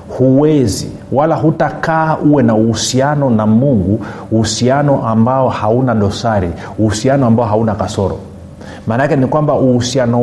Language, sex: Swahili, male